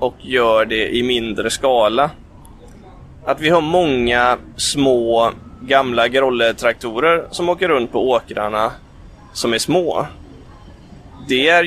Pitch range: 100-130 Hz